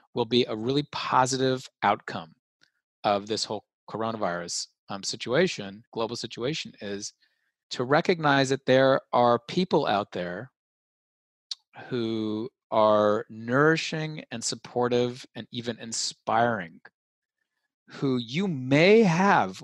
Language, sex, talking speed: English, male, 105 wpm